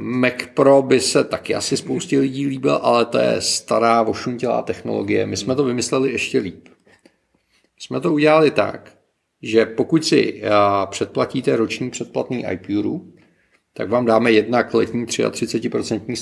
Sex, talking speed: male, 145 wpm